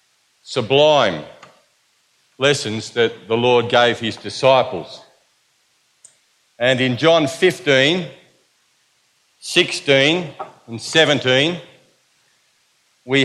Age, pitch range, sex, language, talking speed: 50-69, 125-160 Hz, male, English, 70 wpm